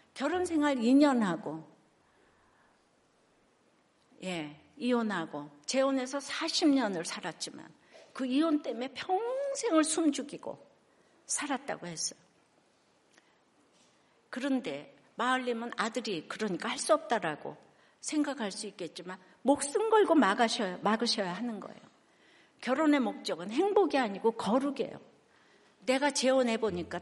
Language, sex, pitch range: Korean, female, 195-280 Hz